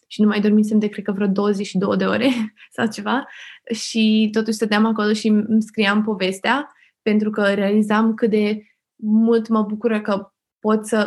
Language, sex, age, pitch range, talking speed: English, female, 20-39, 200-225 Hz, 175 wpm